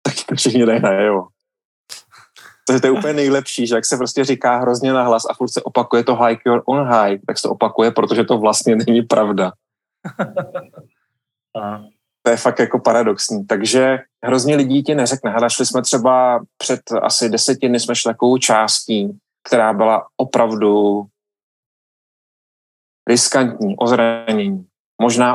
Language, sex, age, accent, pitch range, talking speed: Czech, male, 30-49, native, 110-125 Hz, 140 wpm